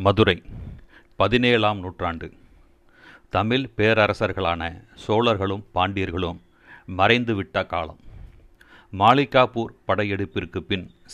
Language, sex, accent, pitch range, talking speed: Tamil, male, native, 95-115 Hz, 65 wpm